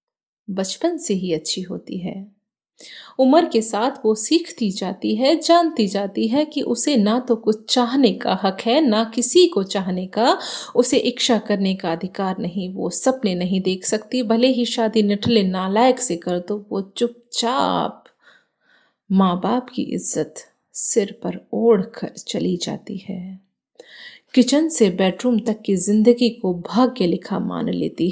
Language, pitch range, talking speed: Hindi, 190-250 Hz, 160 wpm